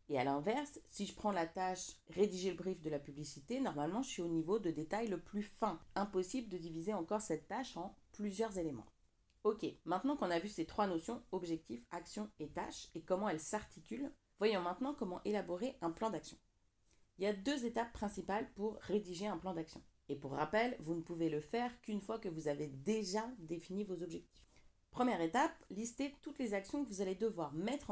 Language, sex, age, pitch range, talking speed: French, female, 40-59, 170-230 Hz, 210 wpm